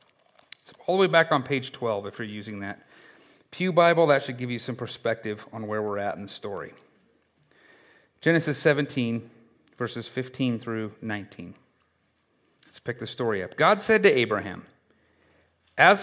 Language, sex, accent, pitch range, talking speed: English, male, American, 125-190 Hz, 160 wpm